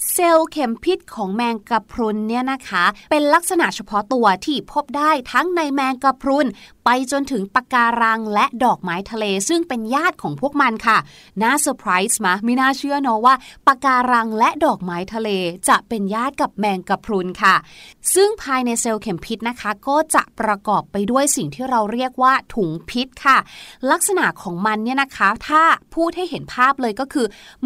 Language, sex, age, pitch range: Thai, female, 20-39, 220-310 Hz